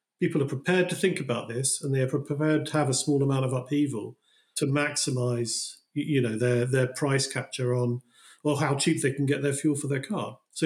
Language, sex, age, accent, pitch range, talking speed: English, male, 40-59, British, 125-150 Hz, 220 wpm